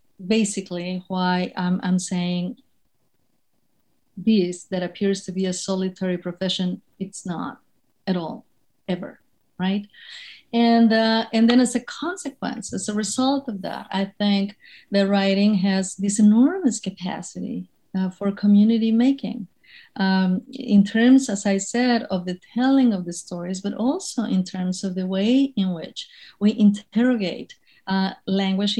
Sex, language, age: female, English, 50-69